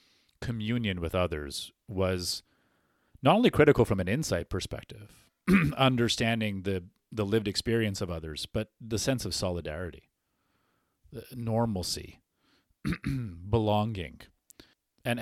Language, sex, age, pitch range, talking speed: English, male, 30-49, 85-110 Hz, 105 wpm